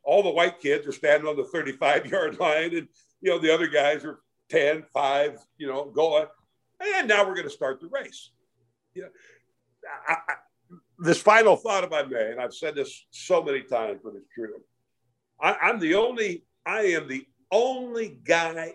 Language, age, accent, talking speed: English, 50-69, American, 190 wpm